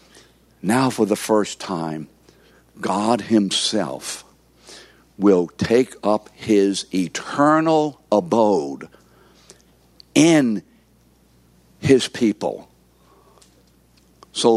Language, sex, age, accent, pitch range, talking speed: English, male, 60-79, American, 95-125 Hz, 70 wpm